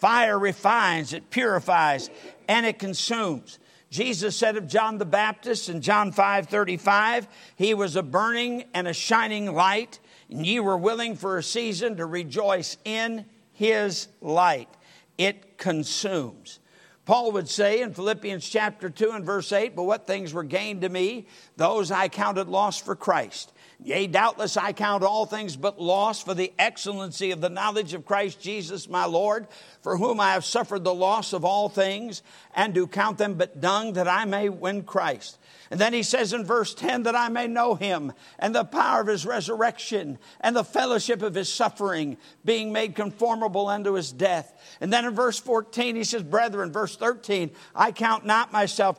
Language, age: English, 50-69